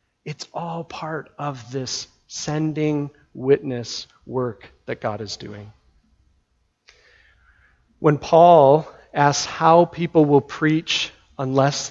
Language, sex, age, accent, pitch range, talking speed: English, male, 40-59, American, 120-155 Hz, 100 wpm